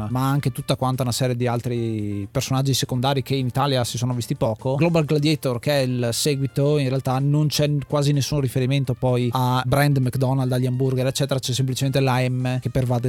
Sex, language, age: male, Italian, 30-49